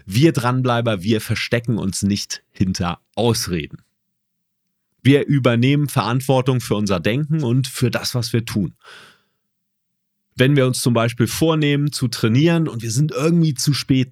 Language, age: German, 40-59